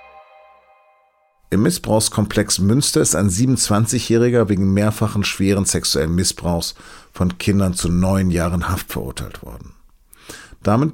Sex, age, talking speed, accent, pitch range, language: male, 50-69, 110 wpm, German, 90-110 Hz, German